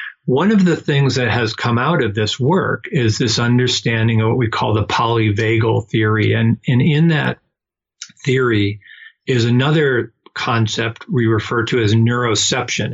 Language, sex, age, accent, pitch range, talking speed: English, male, 50-69, American, 110-130 Hz, 160 wpm